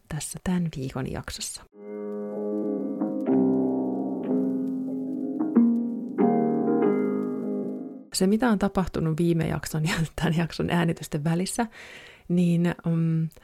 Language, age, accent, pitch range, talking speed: Finnish, 30-49, native, 150-200 Hz, 75 wpm